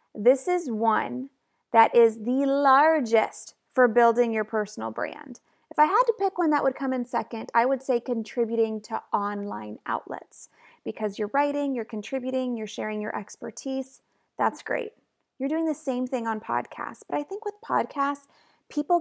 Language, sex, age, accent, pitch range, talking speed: English, female, 30-49, American, 220-270 Hz, 170 wpm